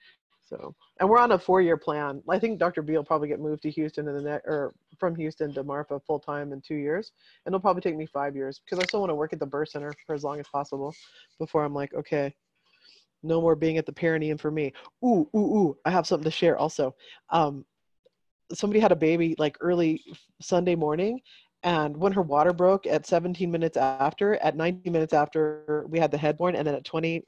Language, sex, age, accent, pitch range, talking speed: English, female, 30-49, American, 150-185 Hz, 220 wpm